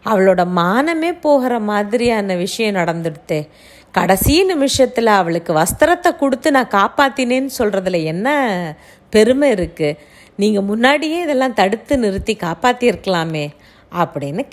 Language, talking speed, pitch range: Tamil, 100 wpm, 175-265 Hz